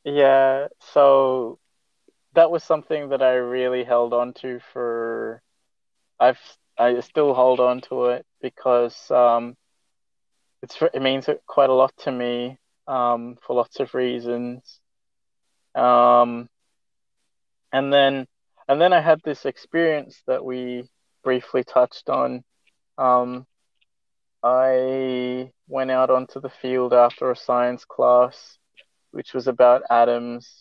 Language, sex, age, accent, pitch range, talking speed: English, male, 20-39, Australian, 120-135 Hz, 125 wpm